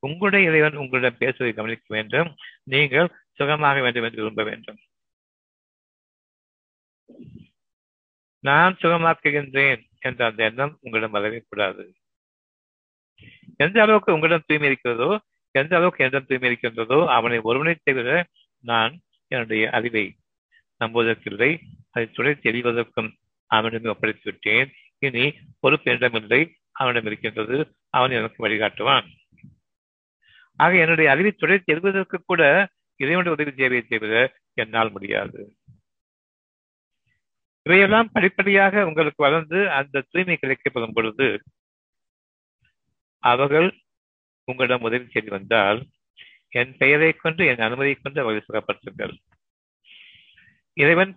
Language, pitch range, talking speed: Tamil, 115-160 Hz, 95 wpm